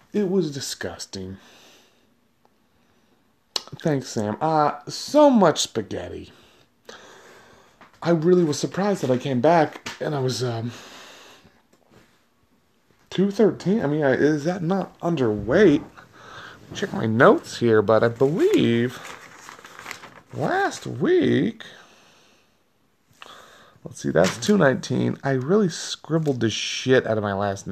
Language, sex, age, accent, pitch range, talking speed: English, male, 30-49, American, 120-185 Hz, 110 wpm